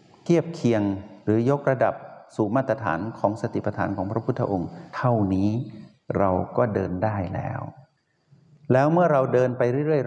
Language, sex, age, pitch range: Thai, male, 60-79, 100-135 Hz